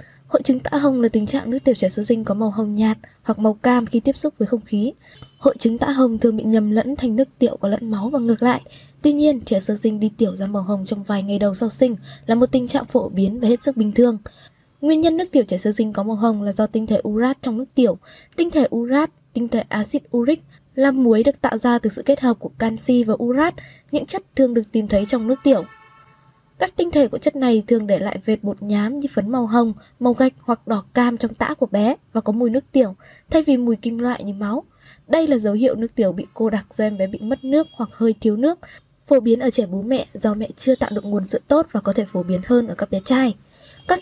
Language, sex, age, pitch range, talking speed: Vietnamese, female, 10-29, 215-265 Hz, 265 wpm